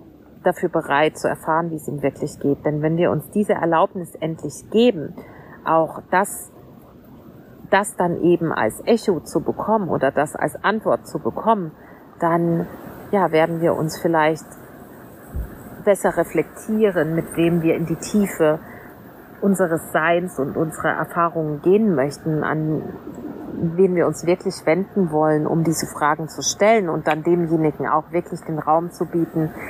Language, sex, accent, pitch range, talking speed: German, female, German, 150-180 Hz, 150 wpm